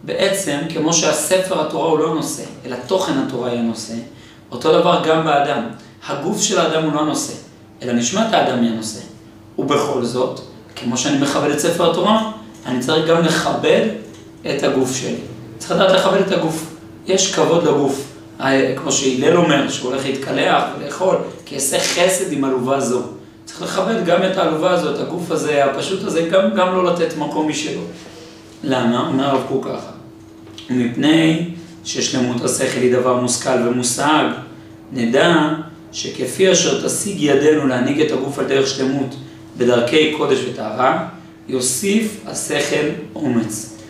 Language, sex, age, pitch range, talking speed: Hebrew, male, 40-59, 125-165 Hz, 150 wpm